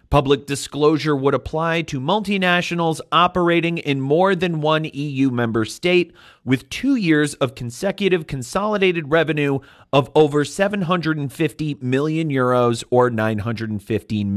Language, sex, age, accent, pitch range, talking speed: English, male, 30-49, American, 125-175 Hz, 115 wpm